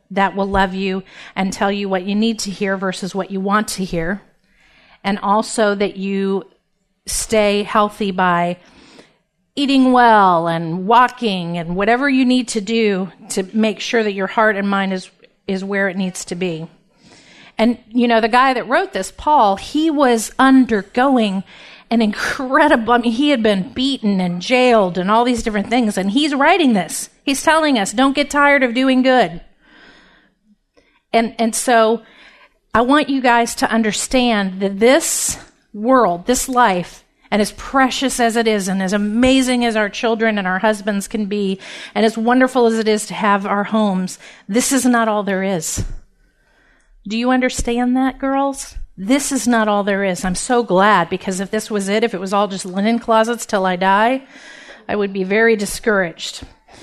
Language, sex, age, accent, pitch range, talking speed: English, female, 40-59, American, 195-250 Hz, 180 wpm